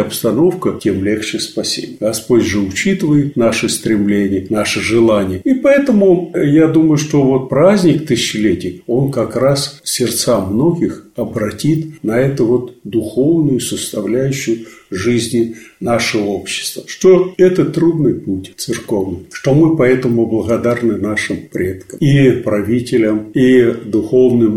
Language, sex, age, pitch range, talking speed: Russian, male, 50-69, 110-145 Hz, 115 wpm